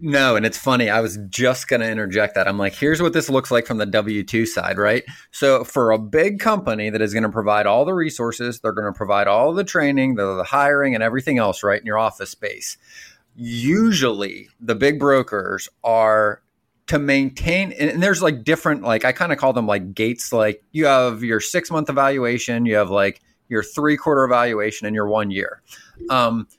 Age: 30-49